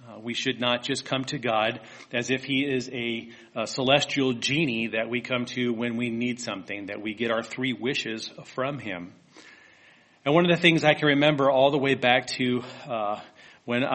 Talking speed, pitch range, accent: 200 wpm, 115-135 Hz, American